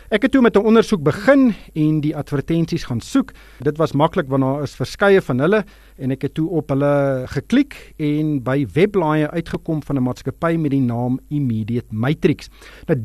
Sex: male